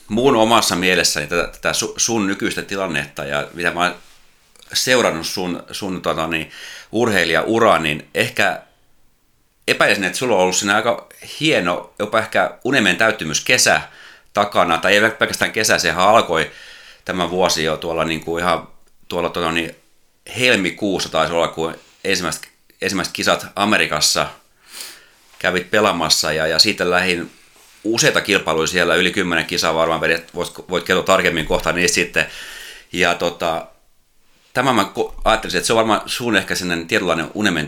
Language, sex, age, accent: Finnish, male, 30-49, native